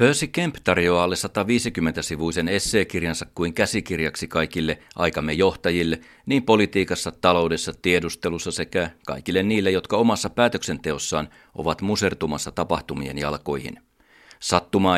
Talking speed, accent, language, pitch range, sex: 105 wpm, native, Finnish, 85-100 Hz, male